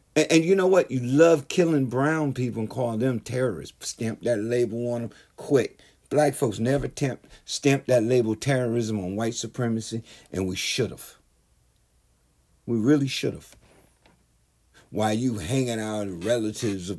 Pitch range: 90-130 Hz